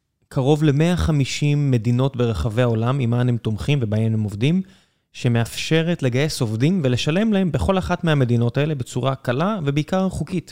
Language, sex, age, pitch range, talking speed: Hebrew, male, 20-39, 120-155 Hz, 135 wpm